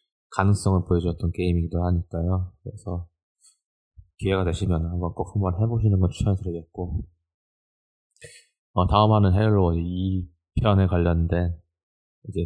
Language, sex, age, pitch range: Korean, male, 20-39, 85-110 Hz